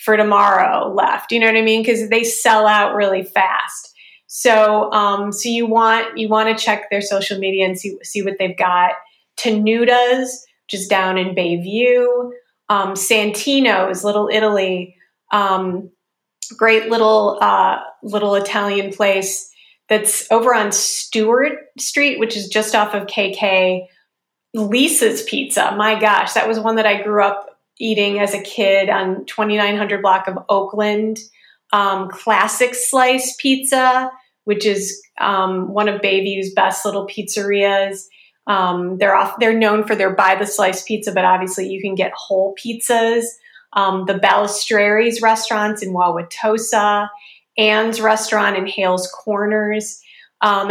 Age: 30-49